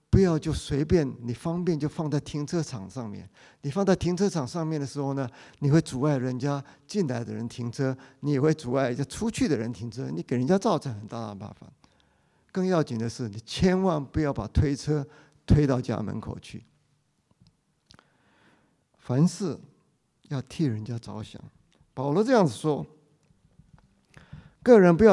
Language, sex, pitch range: English, male, 120-160 Hz